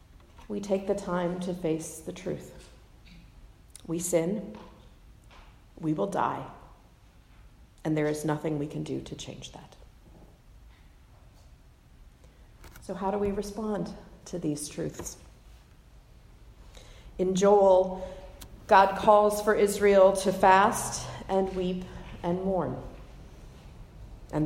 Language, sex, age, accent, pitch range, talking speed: English, female, 40-59, American, 165-195 Hz, 110 wpm